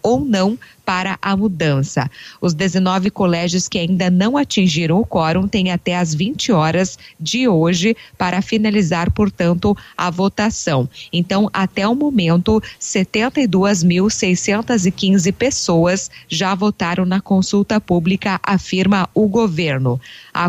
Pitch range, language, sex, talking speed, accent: 170-205 Hz, Portuguese, female, 120 wpm, Brazilian